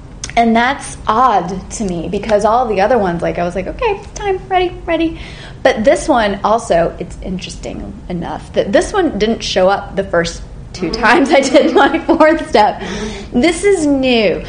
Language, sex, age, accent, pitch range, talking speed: English, female, 30-49, American, 205-295 Hz, 180 wpm